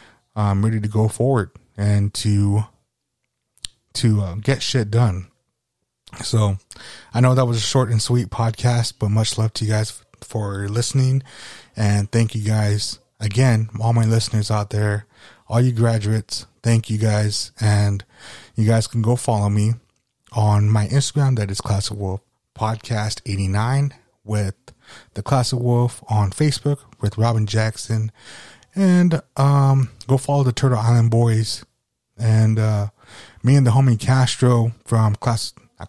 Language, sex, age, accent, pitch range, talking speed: English, male, 20-39, American, 105-120 Hz, 150 wpm